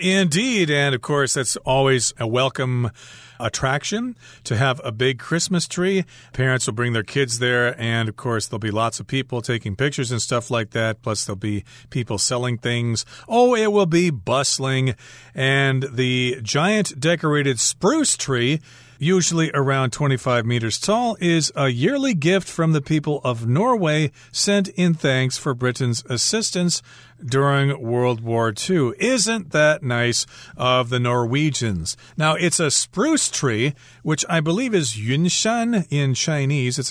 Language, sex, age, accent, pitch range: Chinese, male, 40-59, American, 120-150 Hz